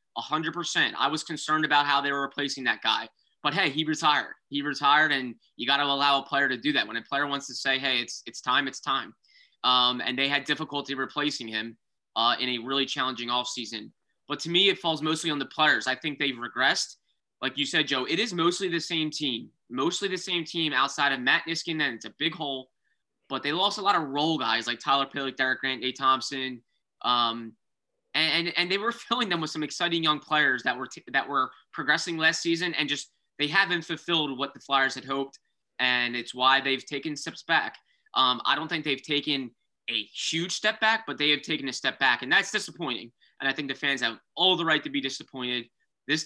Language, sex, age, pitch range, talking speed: English, male, 20-39, 130-160 Hz, 225 wpm